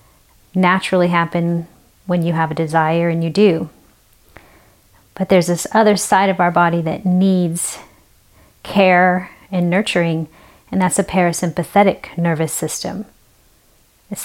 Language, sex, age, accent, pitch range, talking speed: English, female, 30-49, American, 165-190 Hz, 125 wpm